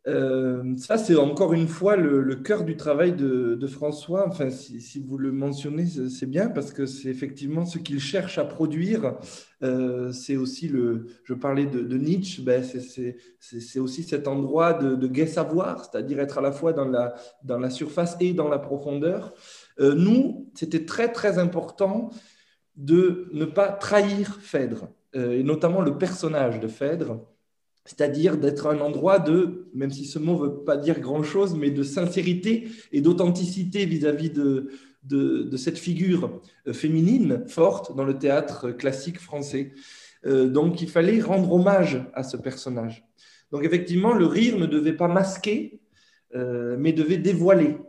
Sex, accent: male, French